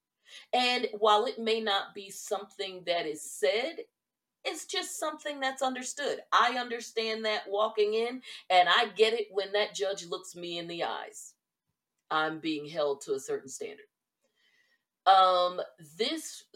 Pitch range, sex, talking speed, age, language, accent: 175-270 Hz, female, 150 wpm, 40-59, English, American